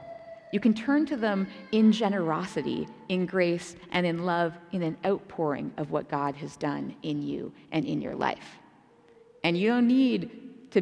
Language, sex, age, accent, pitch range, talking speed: English, female, 30-49, American, 175-245 Hz, 170 wpm